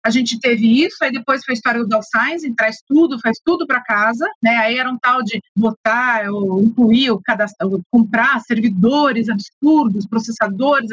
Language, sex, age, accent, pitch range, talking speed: Portuguese, female, 40-59, Brazilian, 220-305 Hz, 175 wpm